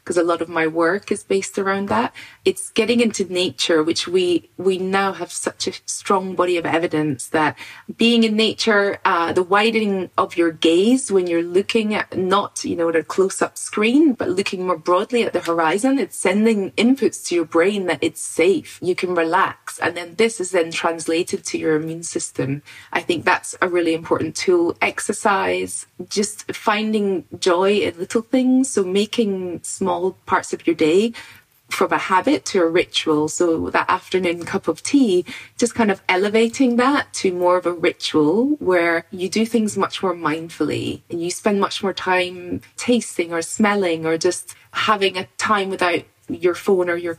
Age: 20-39